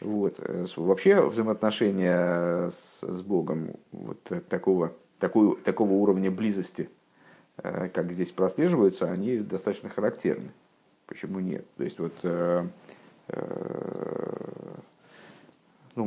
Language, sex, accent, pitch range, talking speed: Russian, male, native, 90-110 Hz, 85 wpm